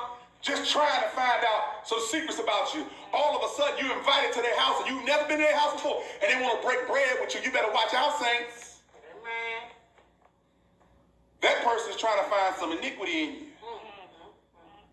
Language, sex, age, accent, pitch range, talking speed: English, male, 40-59, American, 180-290 Hz, 195 wpm